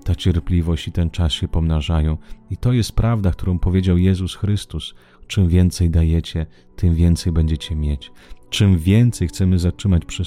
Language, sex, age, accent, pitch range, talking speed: Italian, male, 30-49, Polish, 80-95 Hz, 160 wpm